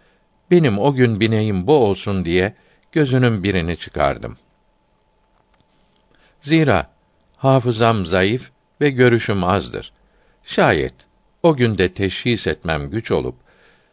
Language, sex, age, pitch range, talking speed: Turkish, male, 60-79, 95-125 Hz, 100 wpm